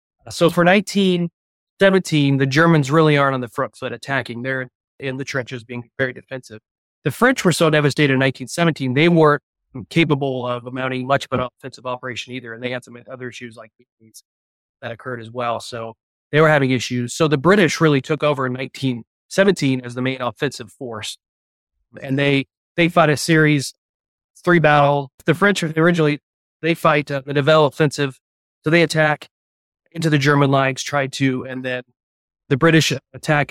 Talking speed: 175 wpm